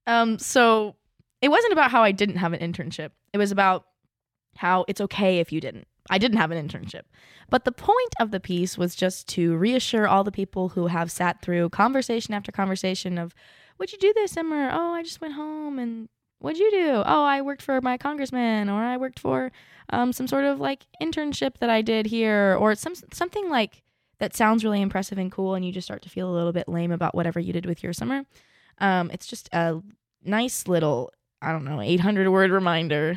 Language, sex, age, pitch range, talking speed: English, female, 20-39, 165-225 Hz, 215 wpm